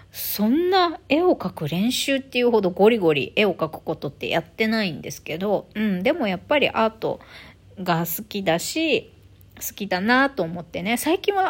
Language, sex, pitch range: Japanese, female, 165-260 Hz